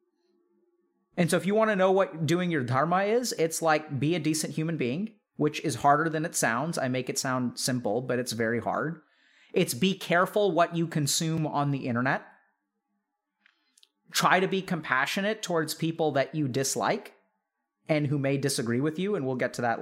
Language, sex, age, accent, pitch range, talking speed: English, male, 30-49, American, 135-180 Hz, 190 wpm